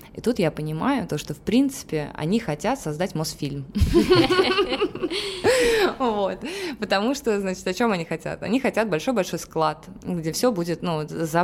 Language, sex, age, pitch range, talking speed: Russian, female, 20-39, 155-200 Hz, 140 wpm